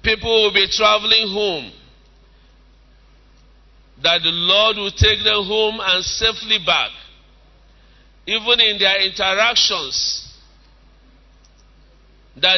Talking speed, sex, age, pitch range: 95 wpm, male, 50-69, 165-200 Hz